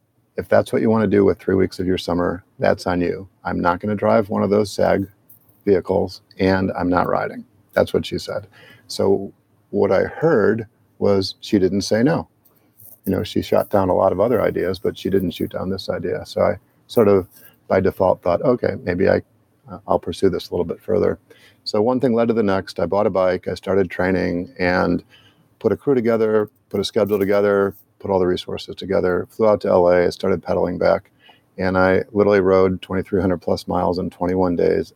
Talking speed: 205 wpm